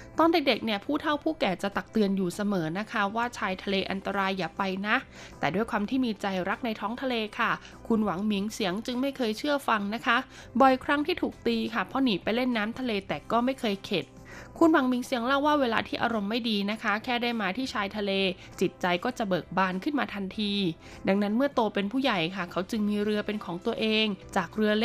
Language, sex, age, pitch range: Thai, female, 20-39, 195-250 Hz